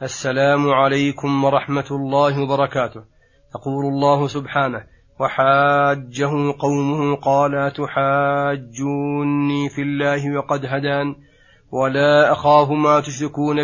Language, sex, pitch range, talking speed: Arabic, male, 135-150 Hz, 90 wpm